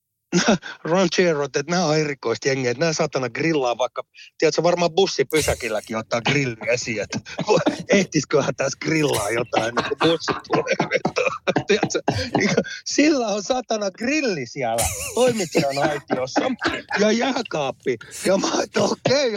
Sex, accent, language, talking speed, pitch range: male, native, Finnish, 100 wpm, 175-255 Hz